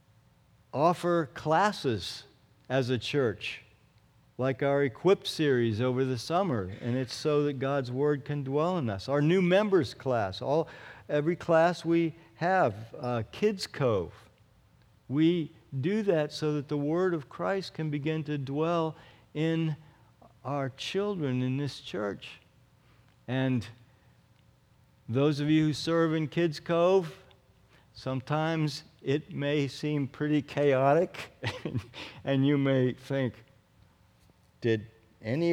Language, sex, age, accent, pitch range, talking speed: English, male, 50-69, American, 125-170 Hz, 125 wpm